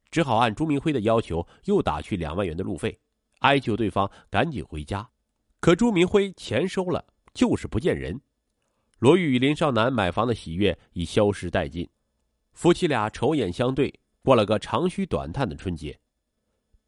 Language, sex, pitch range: Chinese, male, 95-155 Hz